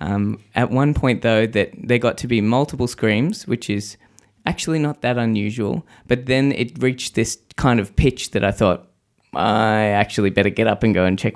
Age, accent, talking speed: 20-39, Australian, 200 wpm